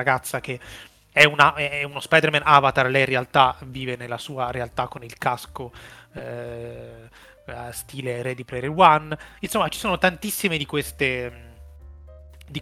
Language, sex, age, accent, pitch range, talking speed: Italian, male, 30-49, native, 125-160 Hz, 145 wpm